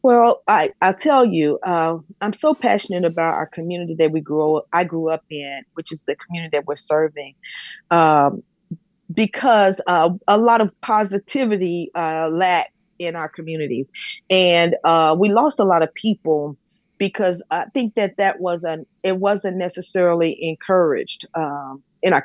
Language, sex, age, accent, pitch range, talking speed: English, female, 40-59, American, 165-225 Hz, 165 wpm